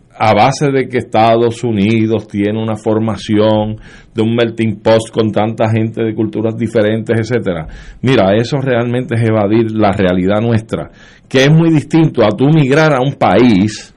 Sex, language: male, Spanish